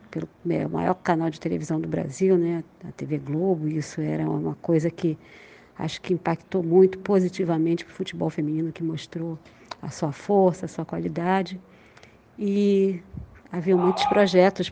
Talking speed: 160 wpm